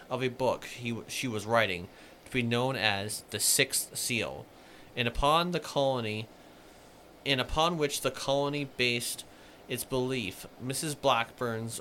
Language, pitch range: English, 110-130 Hz